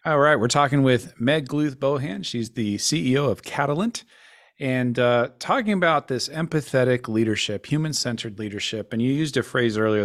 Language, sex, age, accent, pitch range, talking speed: English, male, 40-59, American, 105-130 Hz, 160 wpm